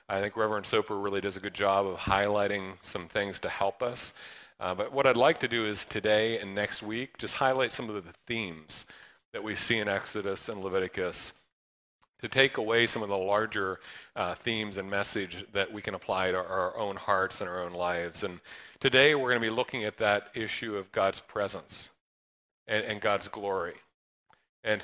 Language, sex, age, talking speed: English, male, 40-59, 200 wpm